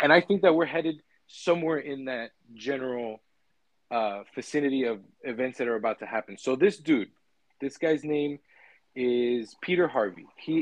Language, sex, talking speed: English, male, 165 wpm